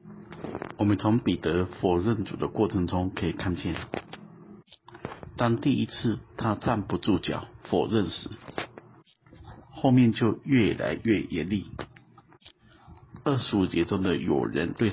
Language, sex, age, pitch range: Chinese, male, 50-69, 100-120 Hz